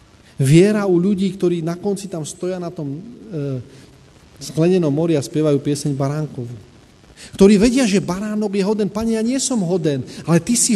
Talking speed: 165 wpm